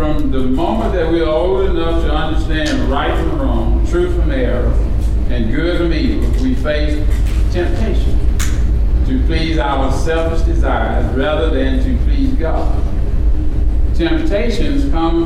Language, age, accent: English, 50-69, American